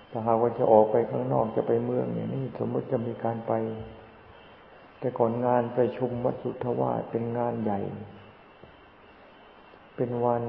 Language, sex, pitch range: Thai, male, 95-120 Hz